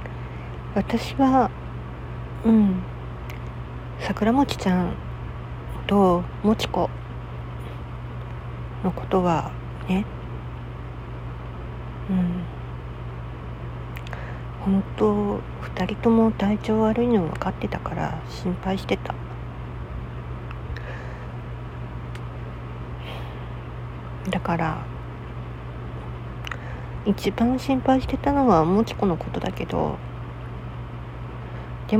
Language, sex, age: Japanese, female, 50-69